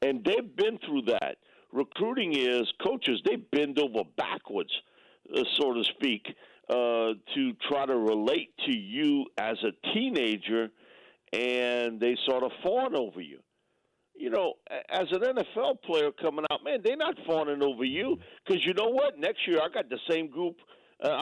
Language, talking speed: English, 165 wpm